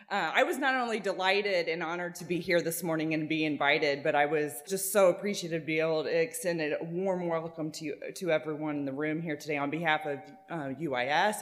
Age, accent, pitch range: 20-39, American, 155-200 Hz